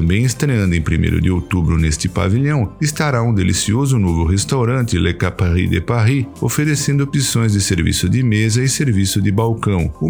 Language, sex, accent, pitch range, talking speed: Portuguese, male, Brazilian, 95-130 Hz, 165 wpm